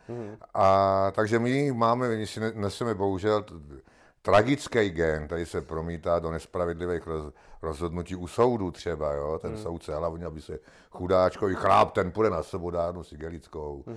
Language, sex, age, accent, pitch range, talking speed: Czech, male, 60-79, native, 90-125 Hz, 140 wpm